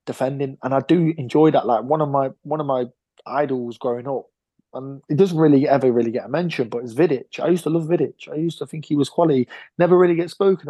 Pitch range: 125-150 Hz